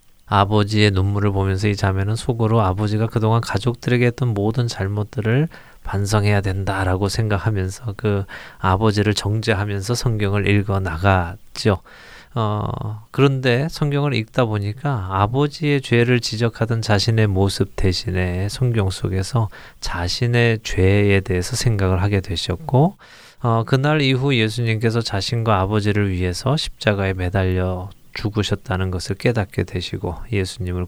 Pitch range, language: 95-115 Hz, Korean